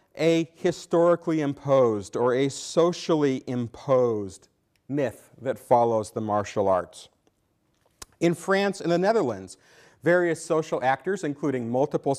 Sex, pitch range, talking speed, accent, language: male, 135-185 Hz, 115 wpm, American, English